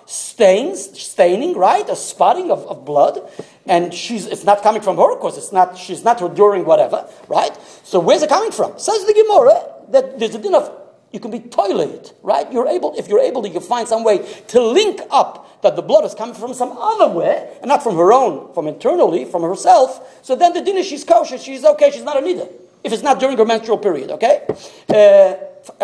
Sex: male